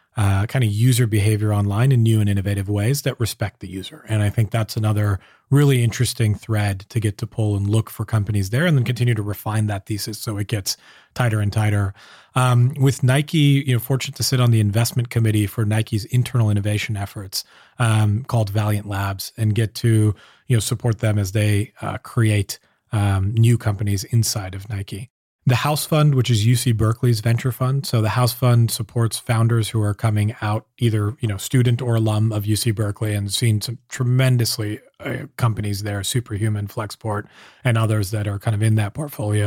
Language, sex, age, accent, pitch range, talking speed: English, male, 30-49, American, 105-120 Hz, 200 wpm